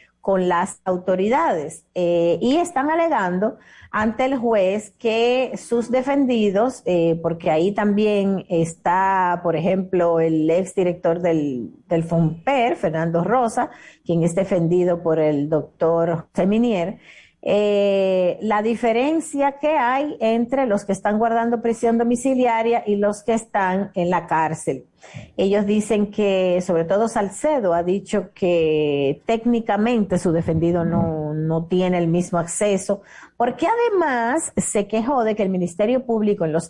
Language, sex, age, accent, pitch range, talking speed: Spanish, female, 50-69, American, 170-230 Hz, 135 wpm